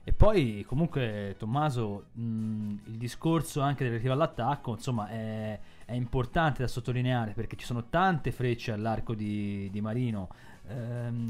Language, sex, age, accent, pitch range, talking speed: Italian, male, 20-39, native, 110-135 Hz, 140 wpm